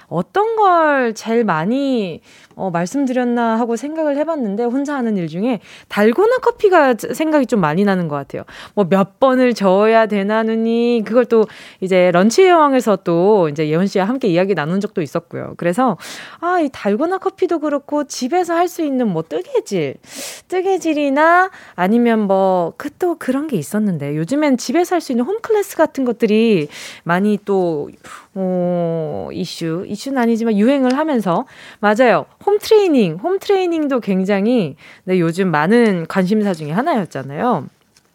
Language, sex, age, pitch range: Korean, female, 20-39, 195-300 Hz